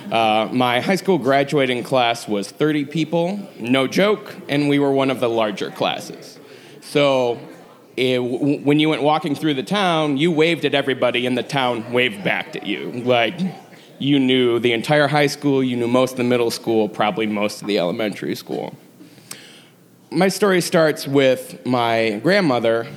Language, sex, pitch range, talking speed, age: English, male, 115-150 Hz, 165 wpm, 30-49